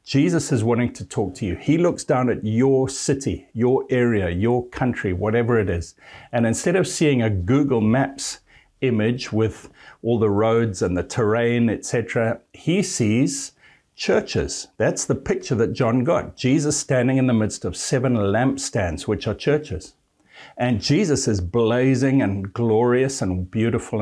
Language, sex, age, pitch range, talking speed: English, male, 60-79, 105-130 Hz, 160 wpm